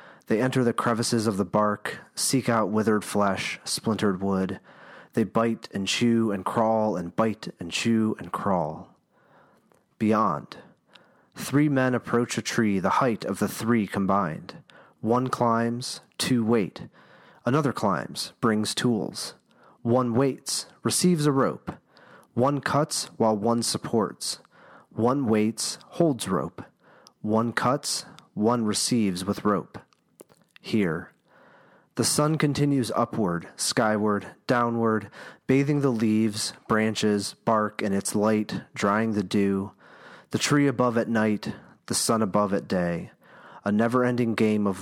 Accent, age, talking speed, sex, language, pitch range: American, 40-59, 130 wpm, male, English, 105-120 Hz